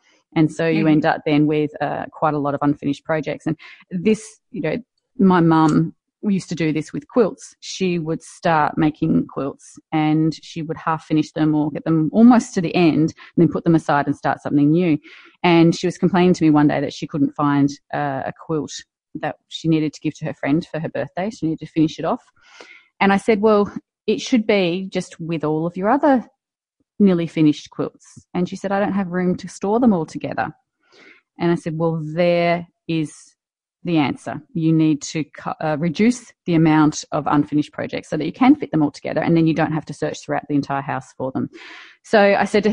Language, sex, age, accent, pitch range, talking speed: English, female, 30-49, Australian, 155-195 Hz, 220 wpm